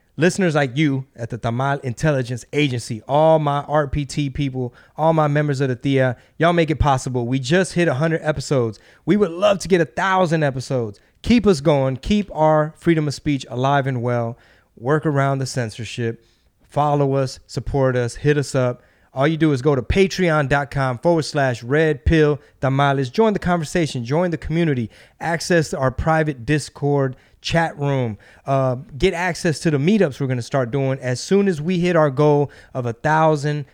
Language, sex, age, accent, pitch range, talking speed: English, male, 30-49, American, 125-160 Hz, 180 wpm